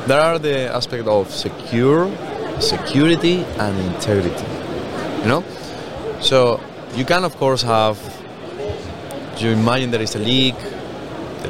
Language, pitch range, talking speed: English, 100-125 Hz, 125 wpm